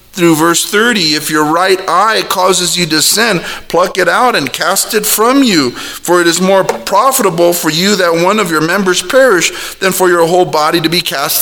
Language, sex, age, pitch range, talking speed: English, male, 40-59, 150-210 Hz, 210 wpm